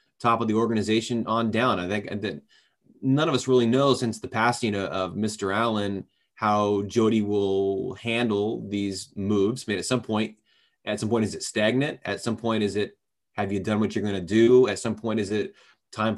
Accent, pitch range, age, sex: American, 100-115 Hz, 20-39, male